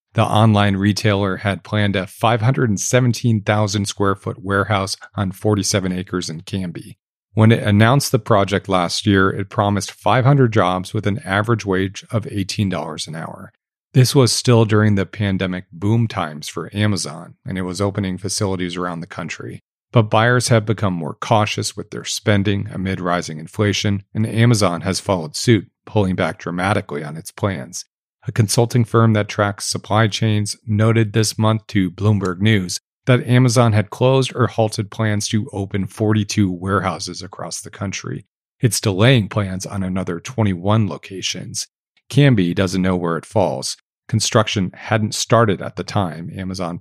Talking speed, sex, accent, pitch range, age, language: 155 wpm, male, American, 95-110 Hz, 40-59, English